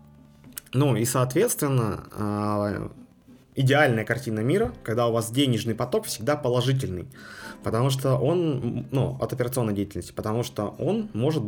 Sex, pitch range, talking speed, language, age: male, 110-140 Hz, 125 wpm, Russian, 20-39